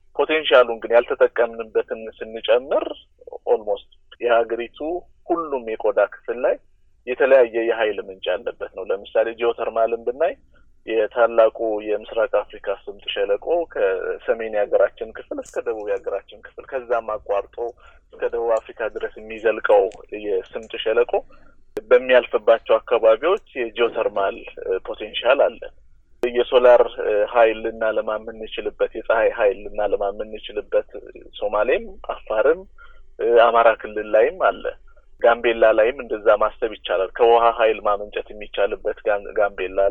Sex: male